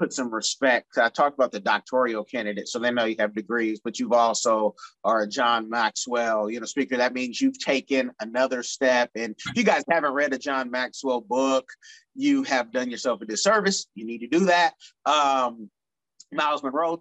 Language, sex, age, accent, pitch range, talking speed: English, male, 30-49, American, 130-180 Hz, 195 wpm